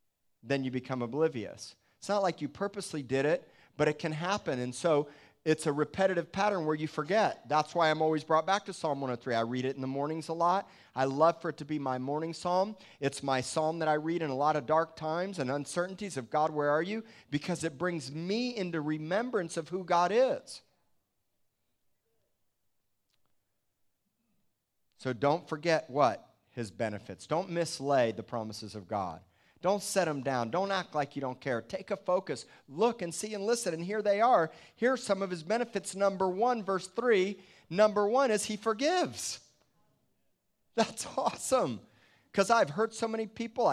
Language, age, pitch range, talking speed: English, 40-59, 145-205 Hz, 185 wpm